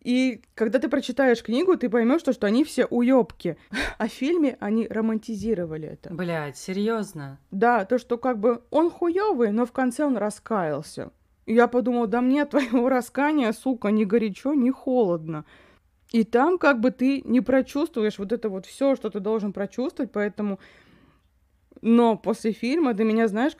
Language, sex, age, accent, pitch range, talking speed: Russian, female, 20-39, native, 195-250 Hz, 165 wpm